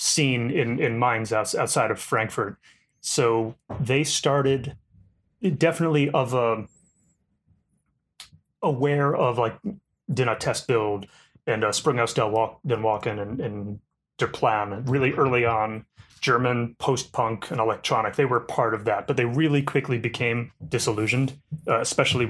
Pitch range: 110-140 Hz